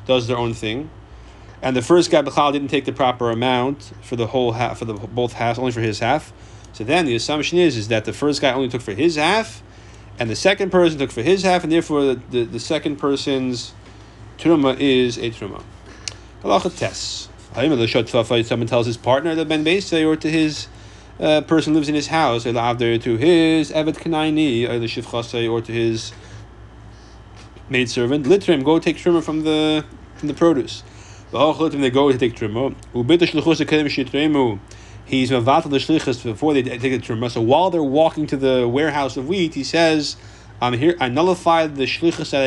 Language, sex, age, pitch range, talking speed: English, male, 30-49, 110-145 Hz, 175 wpm